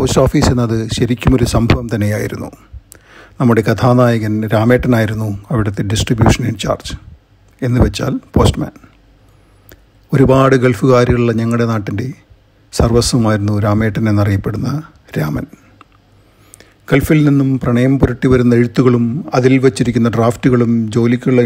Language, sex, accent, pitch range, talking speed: Malayalam, male, native, 110-125 Hz, 90 wpm